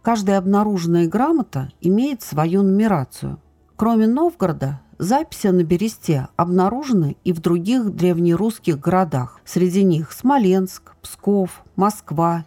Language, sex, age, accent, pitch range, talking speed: Russian, female, 50-69, native, 160-210 Hz, 105 wpm